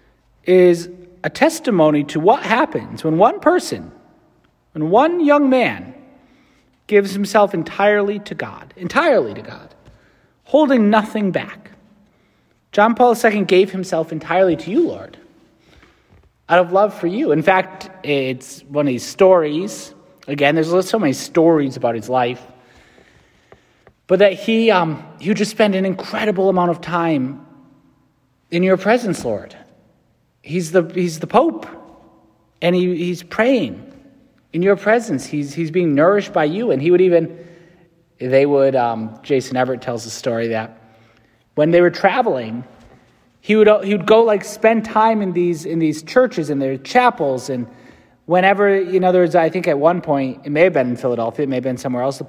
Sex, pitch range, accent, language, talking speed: male, 135-200 Hz, American, English, 165 wpm